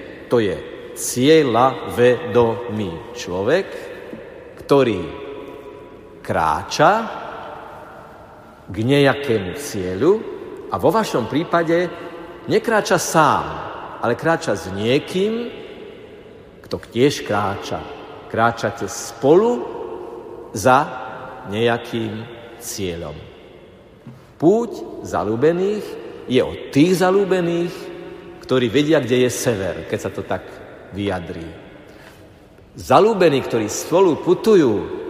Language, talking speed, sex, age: Slovak, 80 wpm, male, 50-69